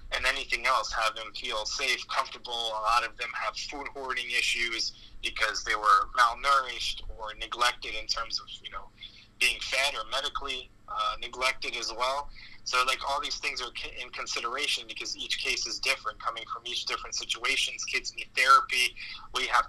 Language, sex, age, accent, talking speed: English, male, 20-39, American, 175 wpm